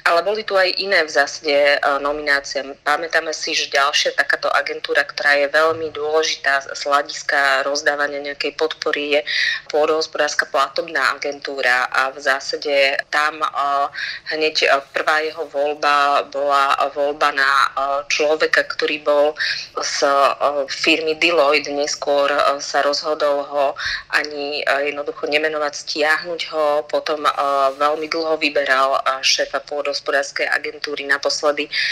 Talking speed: 115 wpm